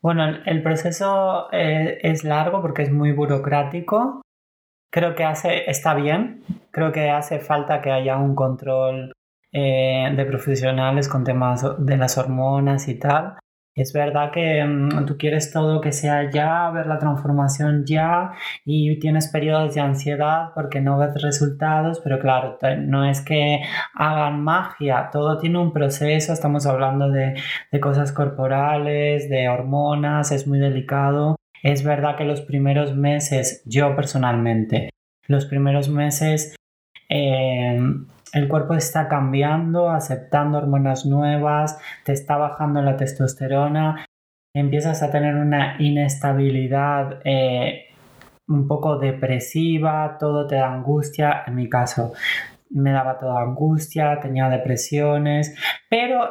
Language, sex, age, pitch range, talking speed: Spanish, male, 20-39, 135-155 Hz, 135 wpm